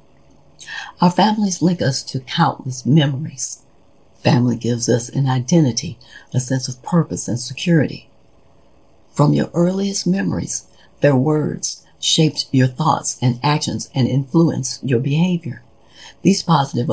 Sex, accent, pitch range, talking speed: female, American, 120-155 Hz, 125 wpm